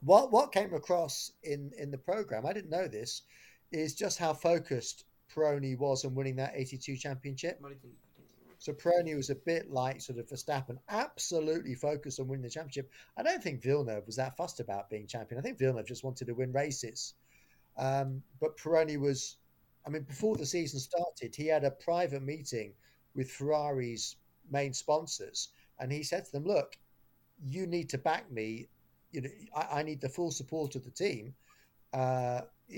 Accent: British